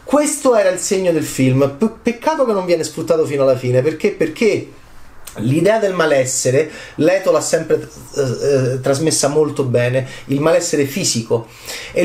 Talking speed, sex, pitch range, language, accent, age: 150 wpm, male, 135-210 Hz, Italian, native, 30-49